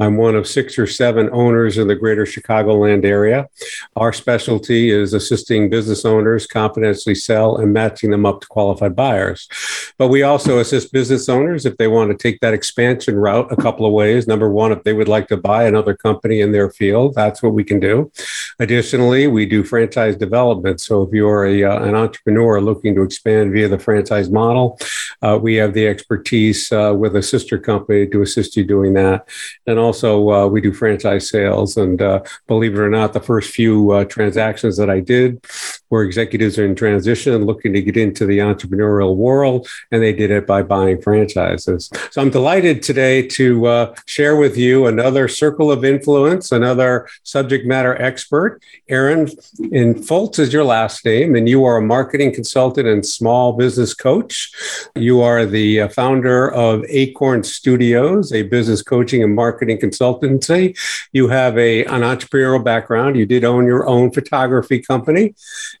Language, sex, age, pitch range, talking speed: English, male, 50-69, 105-125 Hz, 180 wpm